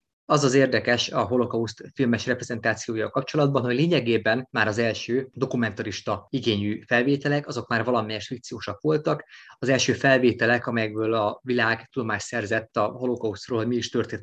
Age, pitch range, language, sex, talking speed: 20-39, 110-135 Hz, Hungarian, male, 150 wpm